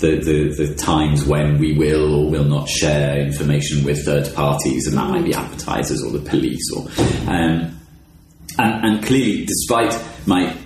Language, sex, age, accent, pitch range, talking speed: English, male, 30-49, British, 80-95 Hz, 170 wpm